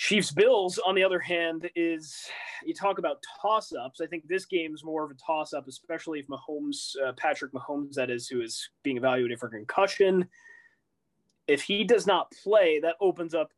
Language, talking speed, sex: English, 200 wpm, male